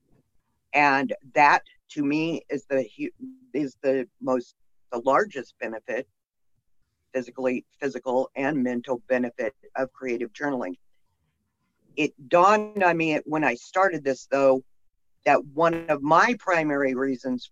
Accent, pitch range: American, 125-150 Hz